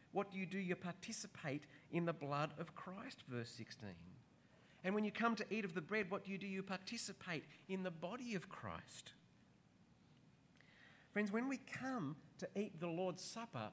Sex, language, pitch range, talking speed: male, English, 145-195 Hz, 185 wpm